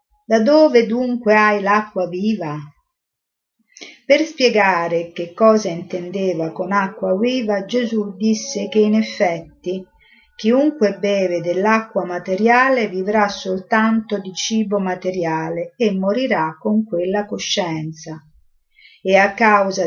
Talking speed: 110 wpm